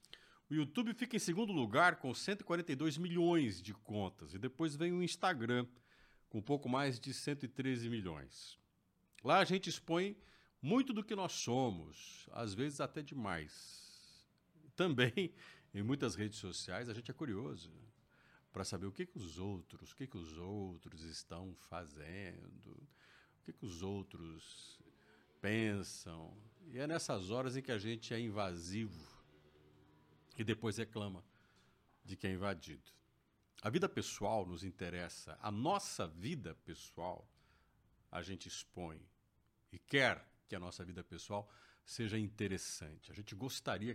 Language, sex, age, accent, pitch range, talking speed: Portuguese, male, 50-69, Brazilian, 90-130 Hz, 140 wpm